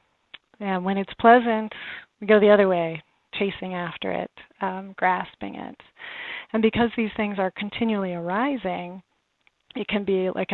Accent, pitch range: American, 185-215 Hz